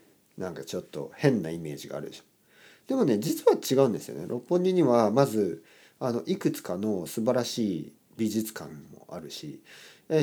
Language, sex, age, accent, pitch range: Japanese, male, 50-69, native, 100-160 Hz